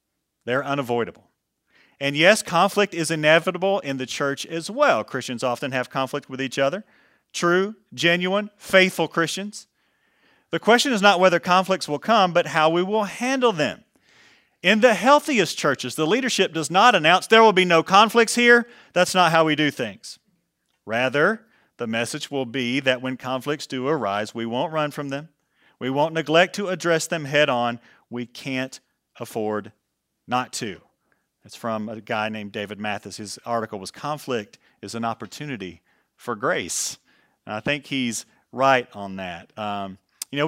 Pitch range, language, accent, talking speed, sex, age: 125-175 Hz, English, American, 165 wpm, male, 40-59